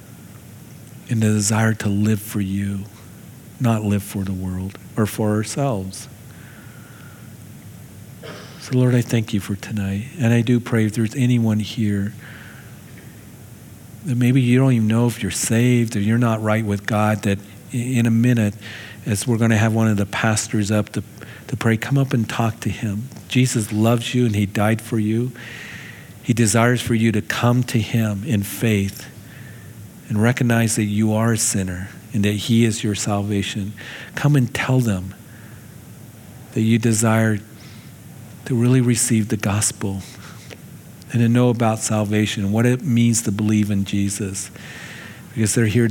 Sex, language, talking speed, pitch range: male, English, 165 wpm, 105-120 Hz